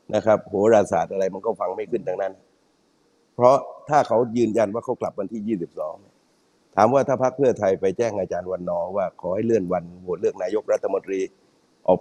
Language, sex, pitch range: Thai, male, 95-125 Hz